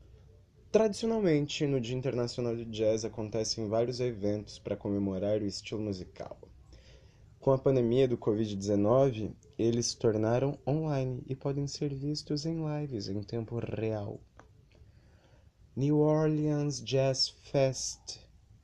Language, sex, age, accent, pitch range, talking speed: Portuguese, male, 20-39, Brazilian, 105-130 Hz, 115 wpm